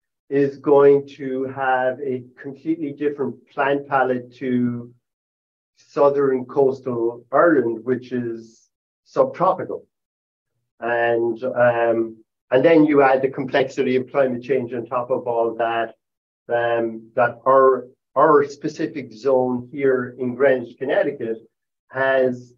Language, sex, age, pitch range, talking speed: English, male, 50-69, 120-140 Hz, 115 wpm